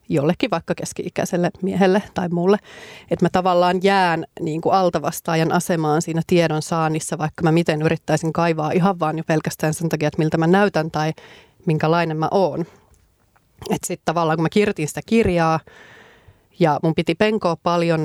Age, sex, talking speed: 30-49, female, 160 wpm